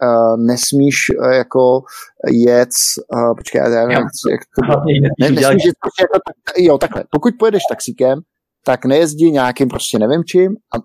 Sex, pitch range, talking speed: male, 125-175 Hz, 135 wpm